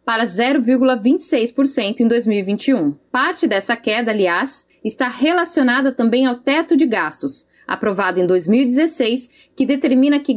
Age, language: 10-29, Portuguese